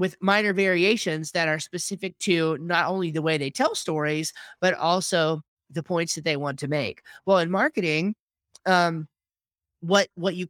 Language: English